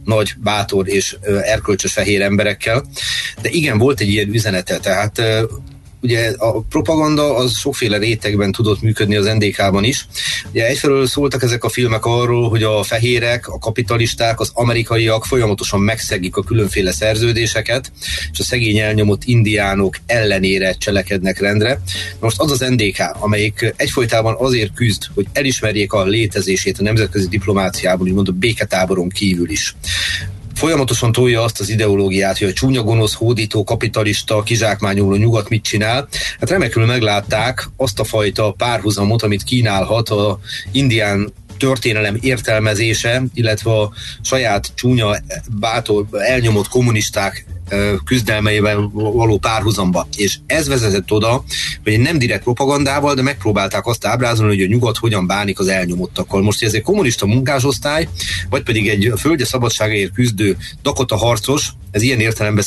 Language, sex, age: Hungarian, male, 30-49